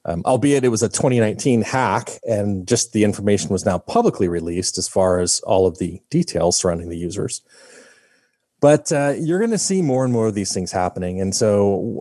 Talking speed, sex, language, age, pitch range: 200 wpm, male, English, 30-49, 95-125 Hz